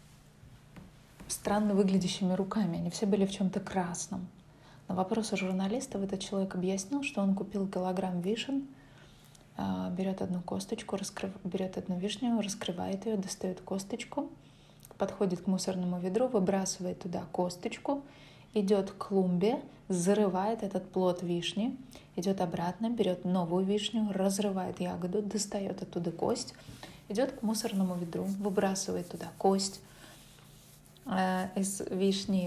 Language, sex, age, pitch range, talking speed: Russian, female, 20-39, 180-205 Hz, 120 wpm